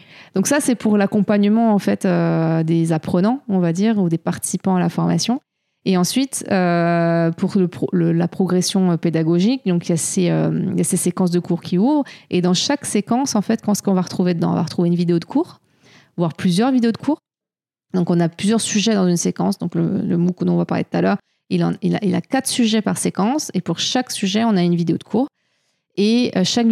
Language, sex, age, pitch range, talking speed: French, female, 30-49, 175-215 Hz, 245 wpm